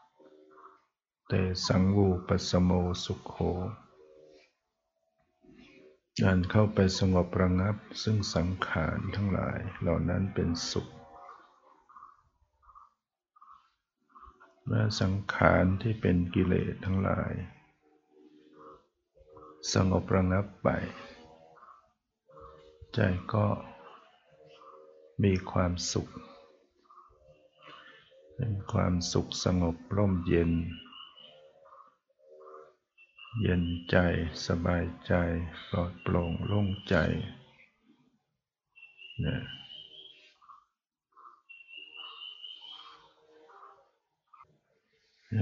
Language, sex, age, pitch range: Thai, male, 60-79, 80-95 Hz